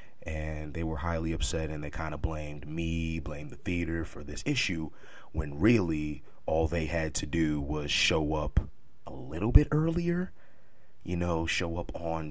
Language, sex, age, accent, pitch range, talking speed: English, male, 30-49, American, 75-85 Hz, 175 wpm